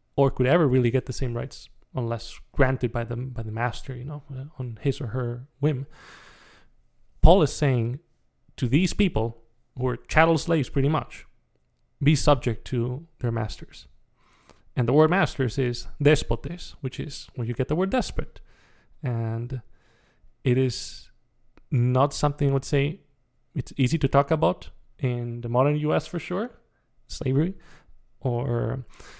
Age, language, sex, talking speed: 20-39, English, male, 150 wpm